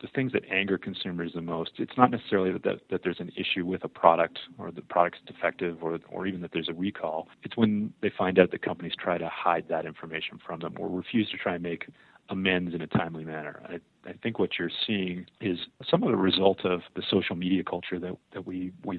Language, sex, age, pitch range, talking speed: English, male, 30-49, 85-100 Hz, 235 wpm